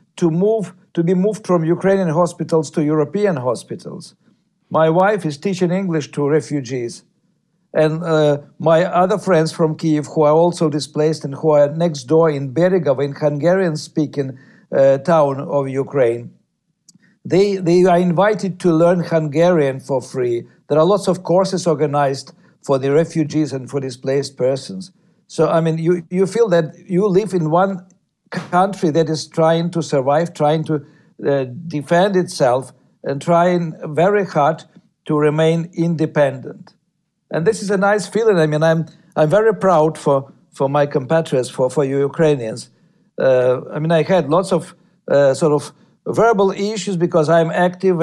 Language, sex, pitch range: English, male, 150-180 Hz